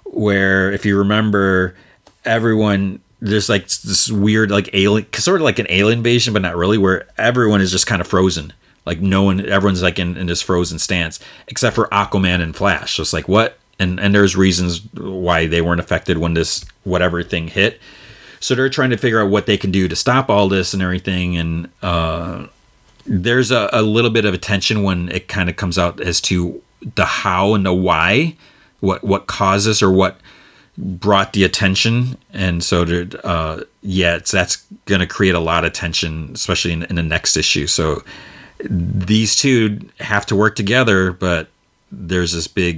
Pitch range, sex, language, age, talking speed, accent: 90-105 Hz, male, English, 30-49, 190 wpm, American